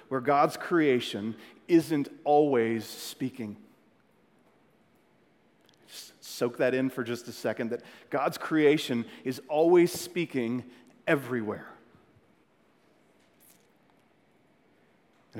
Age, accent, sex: 40-59, American, male